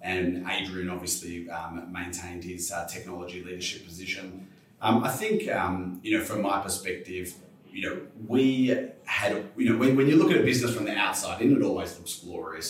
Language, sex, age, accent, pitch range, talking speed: English, male, 30-49, Australian, 90-110 Hz, 190 wpm